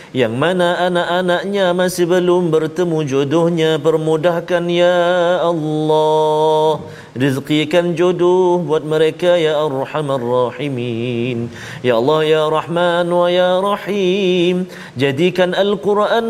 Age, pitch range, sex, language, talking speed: 40-59, 135-175 Hz, male, Malayalam, 105 wpm